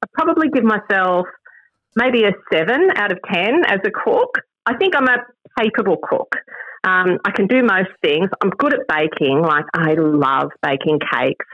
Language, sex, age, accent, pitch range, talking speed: English, female, 40-59, Australian, 155-215 Hz, 175 wpm